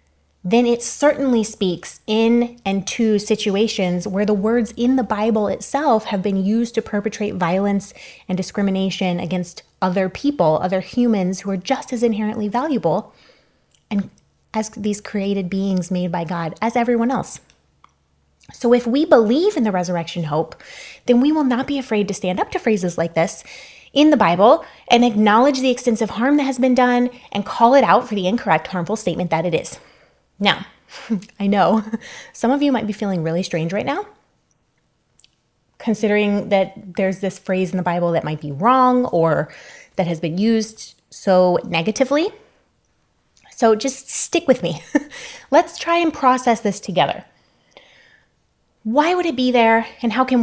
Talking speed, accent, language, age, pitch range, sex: 170 wpm, American, English, 20-39, 190-250 Hz, female